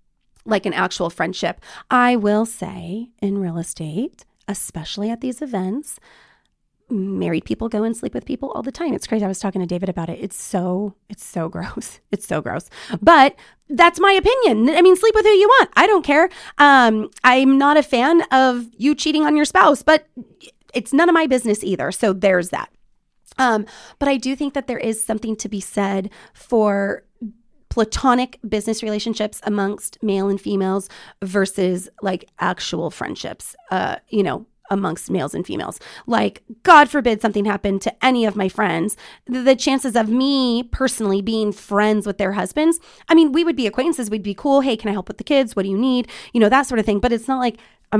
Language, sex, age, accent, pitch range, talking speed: English, female, 30-49, American, 205-270 Hz, 200 wpm